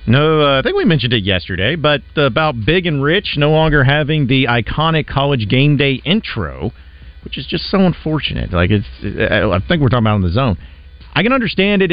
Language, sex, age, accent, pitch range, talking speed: English, male, 40-59, American, 100-150 Hz, 205 wpm